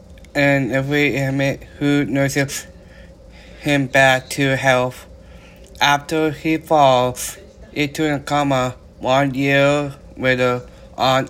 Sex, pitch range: male, 130-145 Hz